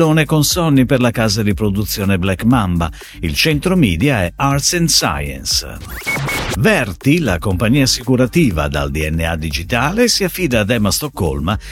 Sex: male